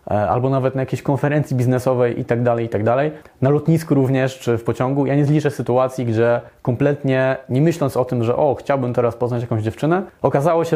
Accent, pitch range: native, 115-140 Hz